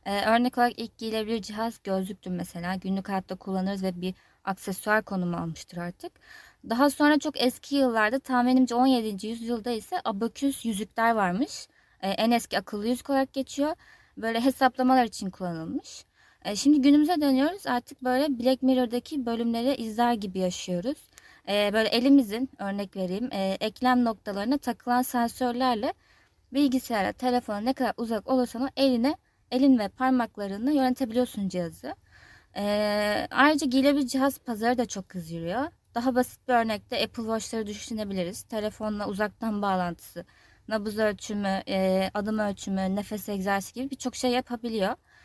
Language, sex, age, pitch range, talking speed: Turkish, female, 20-39, 205-265 Hz, 140 wpm